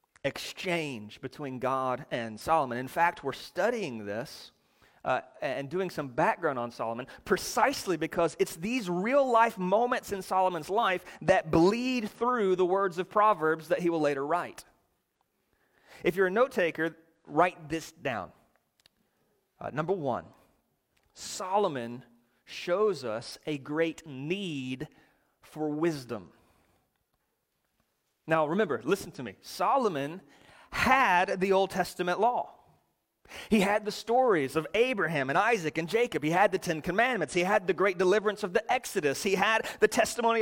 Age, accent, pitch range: 30-49, American, 170-235 Hz